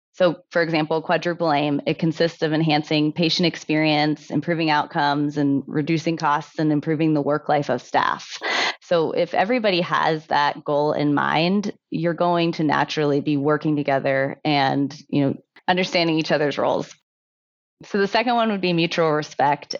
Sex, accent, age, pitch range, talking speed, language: female, American, 20-39, 150-165 Hz, 160 wpm, English